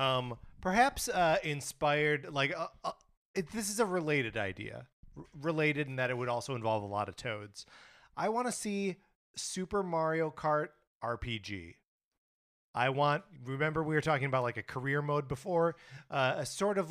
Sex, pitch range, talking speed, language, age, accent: male, 110-150 Hz, 165 wpm, English, 30-49, American